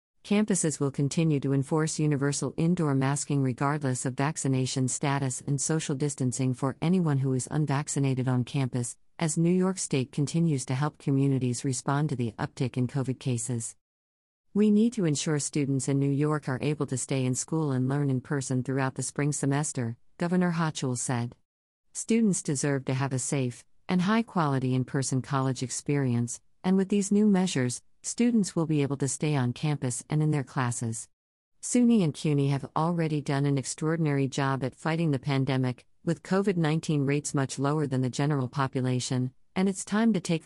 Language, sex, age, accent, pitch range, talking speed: English, female, 50-69, American, 130-155 Hz, 175 wpm